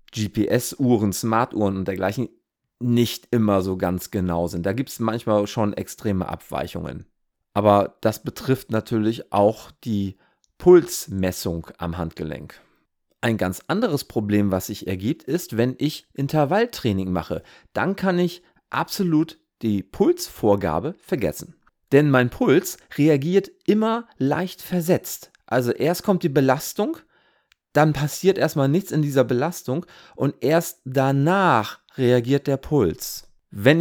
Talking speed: 125 wpm